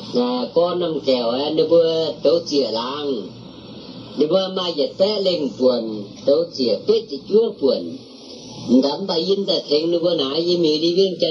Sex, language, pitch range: female, Chinese, 145-195 Hz